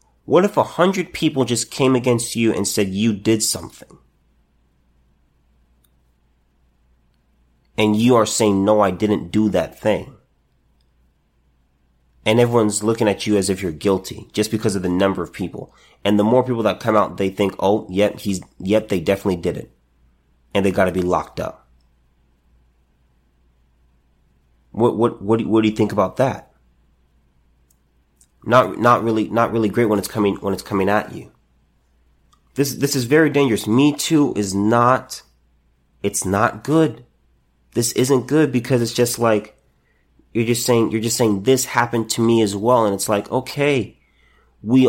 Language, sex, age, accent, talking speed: English, male, 30-49, American, 165 wpm